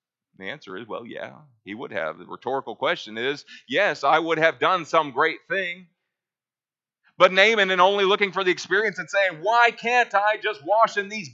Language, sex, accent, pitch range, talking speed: English, male, American, 140-215 Hz, 200 wpm